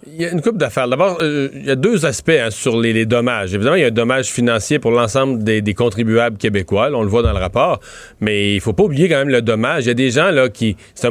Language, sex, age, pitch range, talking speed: French, male, 30-49, 120-155 Hz, 295 wpm